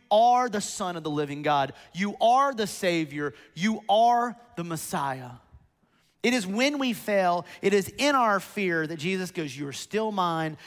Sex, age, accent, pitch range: male, 30-49, American, 160-215 Hz